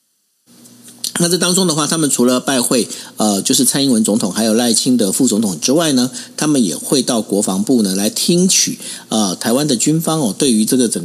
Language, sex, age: Chinese, male, 50-69